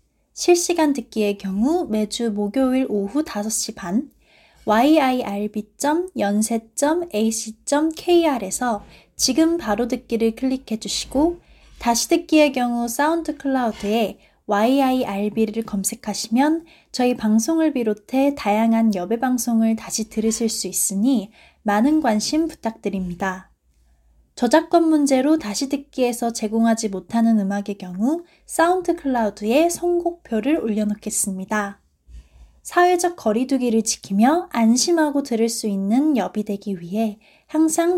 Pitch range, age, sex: 210-300 Hz, 20-39, female